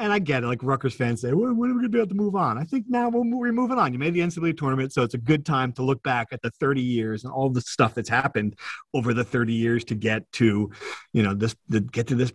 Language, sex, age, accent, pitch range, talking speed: English, male, 40-59, American, 115-150 Hz, 295 wpm